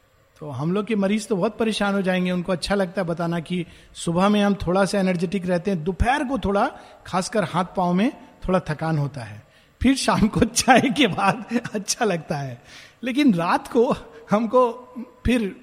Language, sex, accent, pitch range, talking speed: Hindi, male, native, 190-265 Hz, 190 wpm